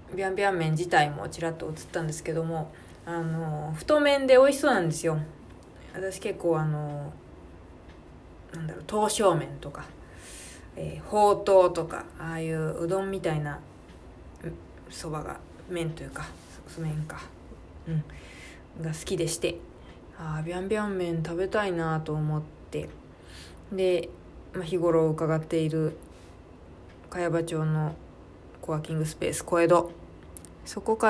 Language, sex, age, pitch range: Japanese, female, 20-39, 150-190 Hz